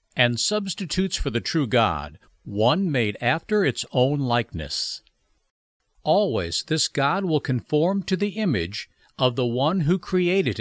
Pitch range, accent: 100-165 Hz, American